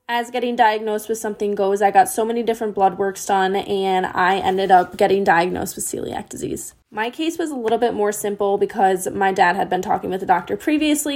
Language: English